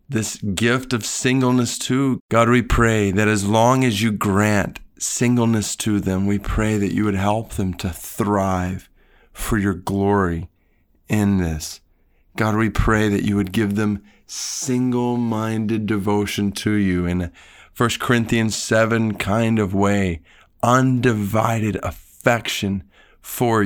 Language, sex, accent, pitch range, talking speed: English, male, American, 95-120 Hz, 135 wpm